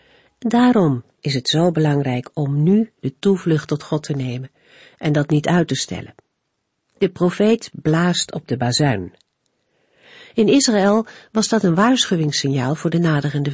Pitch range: 140-200 Hz